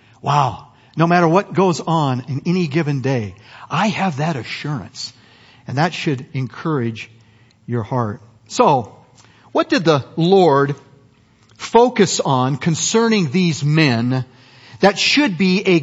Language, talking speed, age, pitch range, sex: English, 130 wpm, 50-69, 135-215 Hz, male